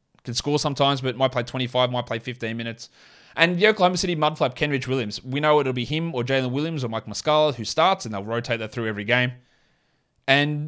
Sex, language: male, English